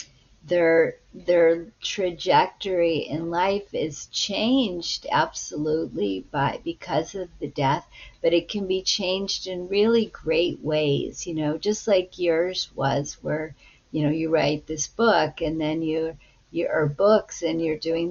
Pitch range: 150-185 Hz